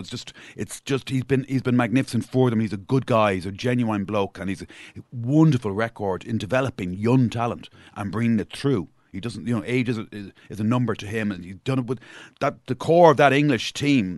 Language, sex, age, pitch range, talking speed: English, male, 40-59, 110-130 Hz, 240 wpm